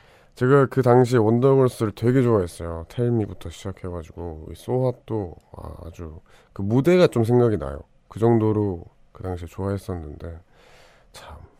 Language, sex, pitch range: Korean, male, 90-115 Hz